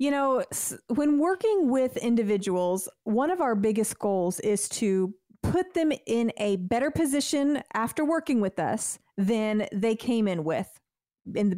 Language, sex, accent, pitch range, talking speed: English, female, American, 210-275 Hz, 155 wpm